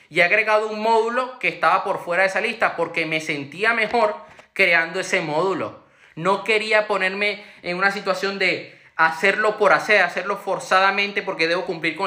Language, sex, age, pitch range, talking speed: Spanish, male, 20-39, 165-210 Hz, 175 wpm